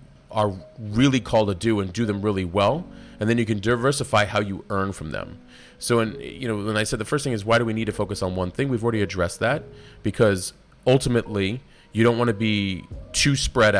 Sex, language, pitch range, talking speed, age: male, English, 95-120 Hz, 230 wpm, 30-49